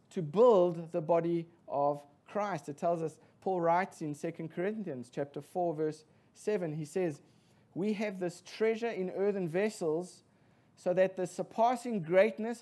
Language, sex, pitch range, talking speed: English, male, 145-185 Hz, 150 wpm